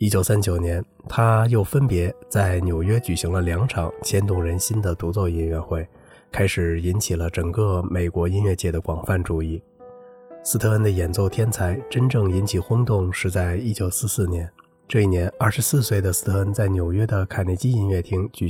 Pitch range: 90-110 Hz